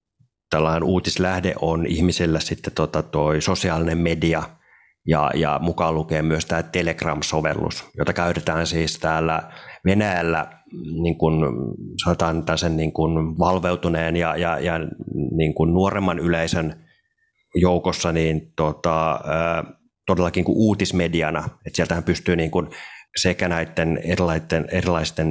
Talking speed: 100 wpm